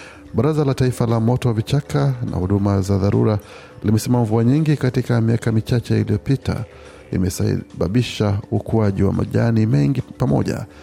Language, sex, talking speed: Swahili, male, 125 wpm